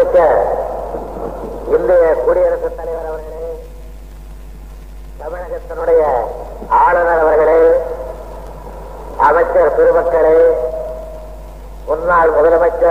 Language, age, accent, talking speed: Tamil, 50-69, native, 50 wpm